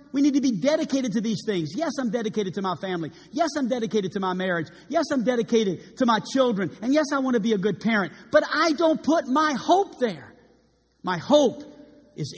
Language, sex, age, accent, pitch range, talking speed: English, male, 50-69, American, 160-235 Hz, 220 wpm